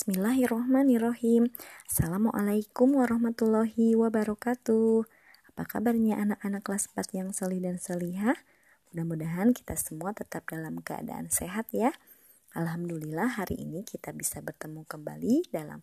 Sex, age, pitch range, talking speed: male, 20-39, 165-225 Hz, 110 wpm